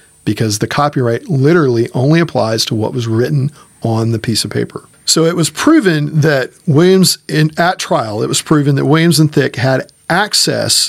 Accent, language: American, English